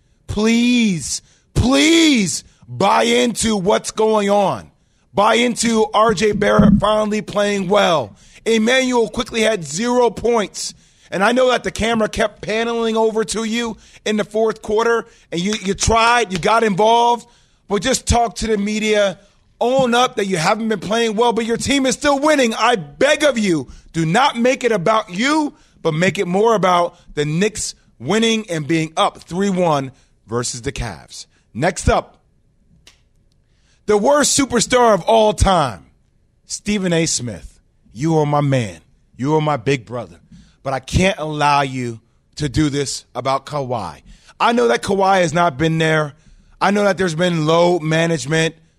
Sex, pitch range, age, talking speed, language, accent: male, 155-225 Hz, 30-49, 160 wpm, English, American